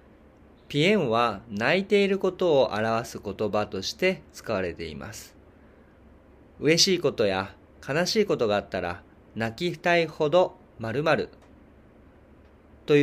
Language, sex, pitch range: Japanese, male, 95-155 Hz